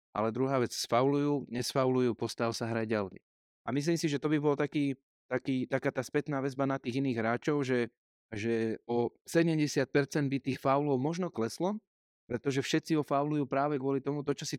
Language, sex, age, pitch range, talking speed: Slovak, male, 30-49, 125-140 Hz, 175 wpm